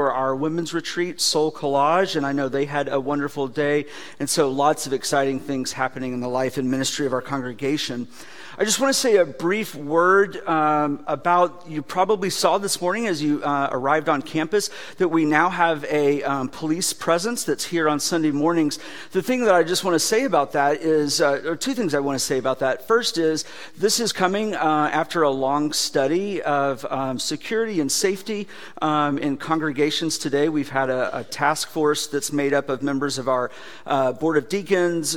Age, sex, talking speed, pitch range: 50-69, male, 205 wpm, 135-165 Hz